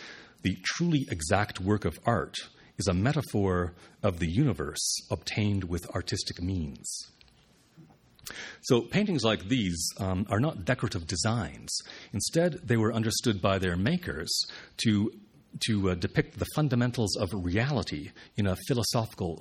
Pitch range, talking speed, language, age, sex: 95-115 Hz, 135 wpm, English, 40-59, male